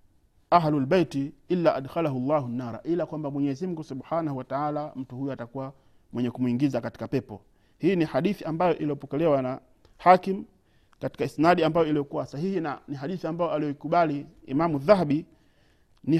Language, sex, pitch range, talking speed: Swahili, male, 140-170 Hz, 145 wpm